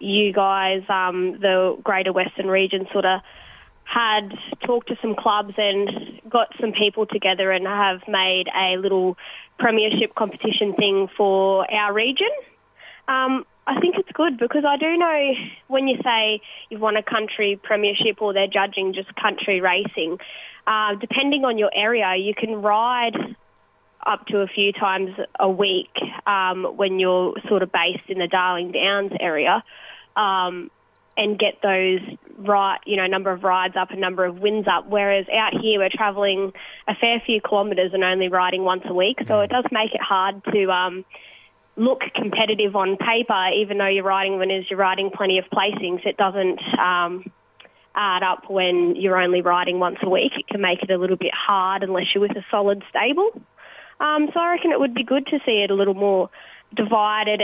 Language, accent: English, Australian